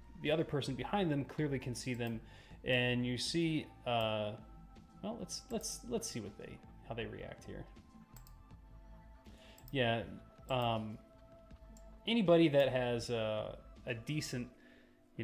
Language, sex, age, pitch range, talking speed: English, male, 30-49, 115-135 Hz, 130 wpm